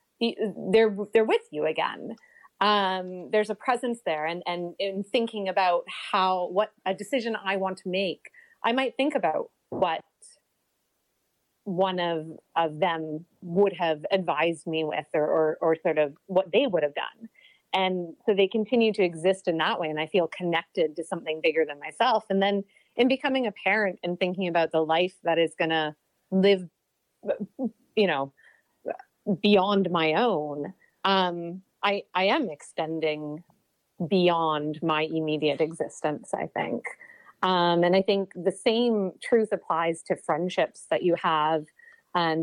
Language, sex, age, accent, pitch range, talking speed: English, female, 30-49, American, 160-205 Hz, 155 wpm